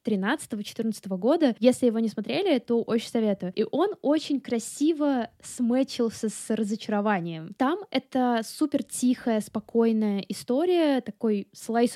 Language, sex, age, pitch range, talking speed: Russian, female, 10-29, 210-250 Hz, 115 wpm